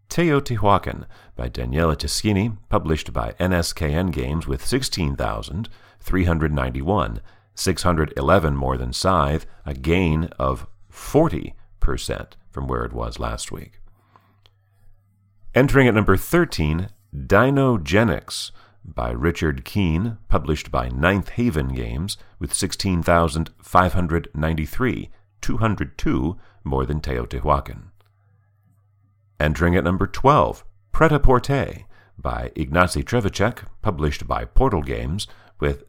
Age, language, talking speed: 40-59, English, 95 wpm